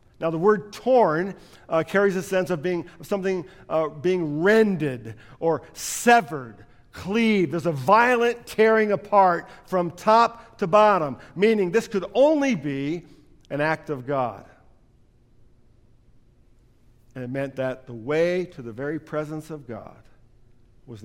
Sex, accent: male, American